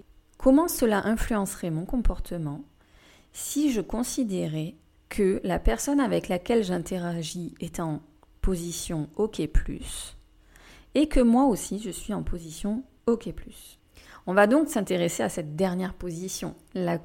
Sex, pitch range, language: female, 175-235 Hz, French